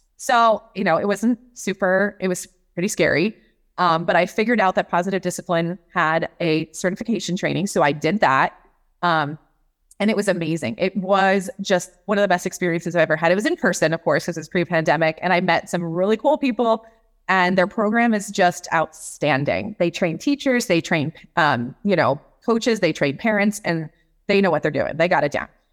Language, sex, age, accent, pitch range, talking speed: English, female, 30-49, American, 165-205 Hz, 200 wpm